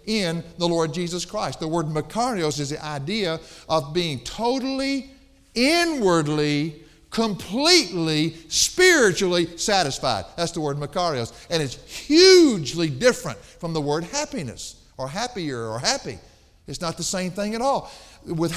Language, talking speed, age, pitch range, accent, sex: English, 135 wpm, 50-69, 125-195 Hz, American, male